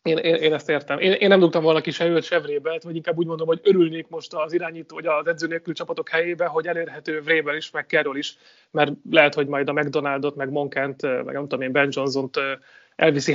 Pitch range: 140-165 Hz